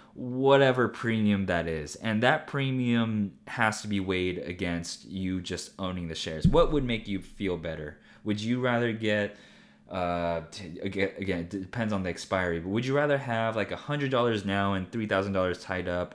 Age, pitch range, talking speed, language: 20-39, 90-110 Hz, 180 wpm, English